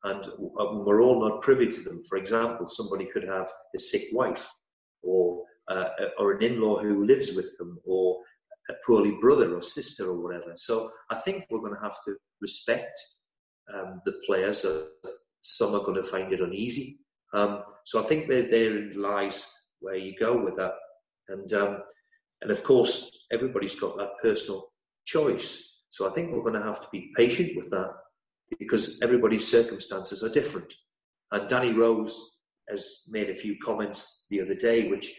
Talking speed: 175 wpm